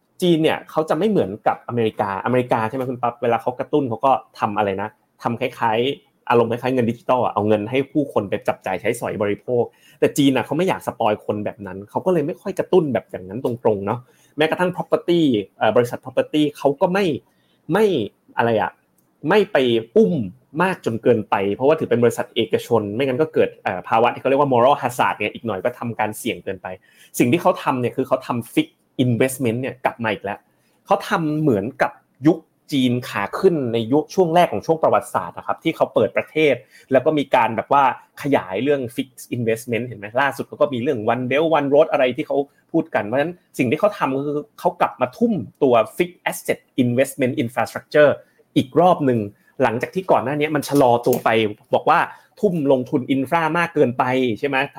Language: Thai